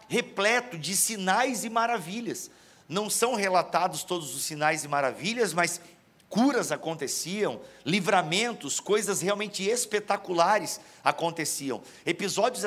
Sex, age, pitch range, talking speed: male, 50-69, 180-230 Hz, 105 wpm